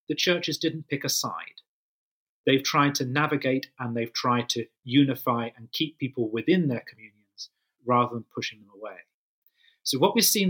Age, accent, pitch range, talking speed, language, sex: 40-59, British, 125-165 Hz, 170 wpm, English, male